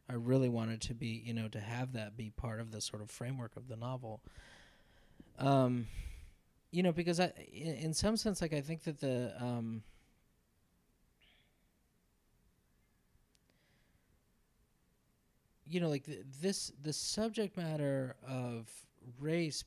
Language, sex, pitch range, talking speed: English, male, 115-140 Hz, 135 wpm